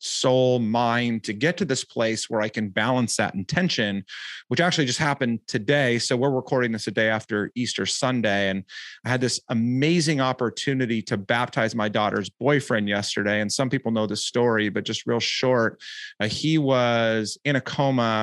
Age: 30-49